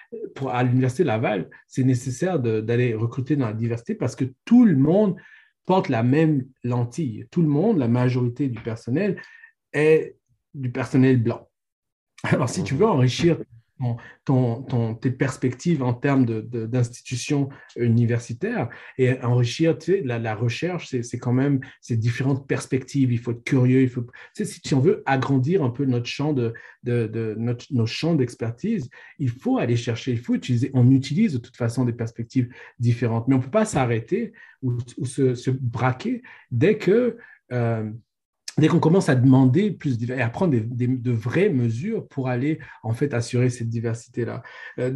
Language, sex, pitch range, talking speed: French, male, 120-155 Hz, 180 wpm